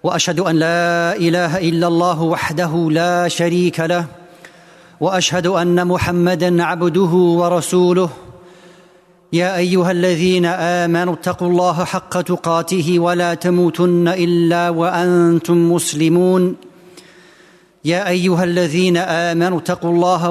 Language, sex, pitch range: English, male, 170-180 Hz